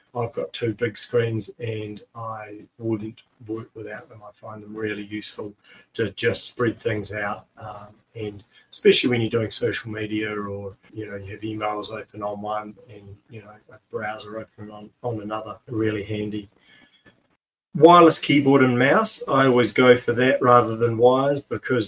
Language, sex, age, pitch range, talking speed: English, male, 30-49, 105-120 Hz, 170 wpm